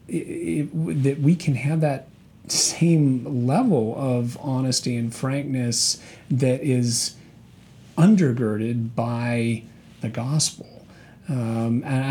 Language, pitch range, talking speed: English, 120-145 Hz, 95 wpm